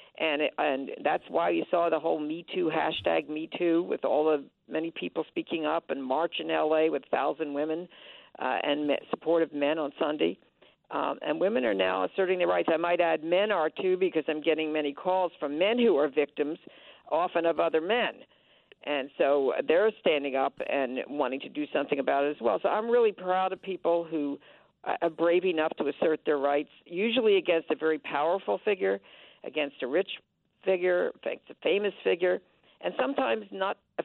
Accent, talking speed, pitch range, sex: American, 190 wpm, 155-190 Hz, female